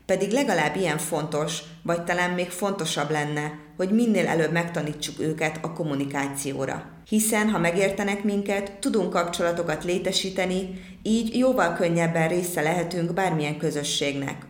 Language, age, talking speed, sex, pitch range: Hungarian, 30-49, 125 wpm, female, 155-195 Hz